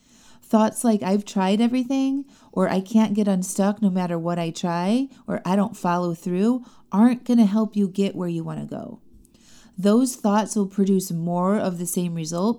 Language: English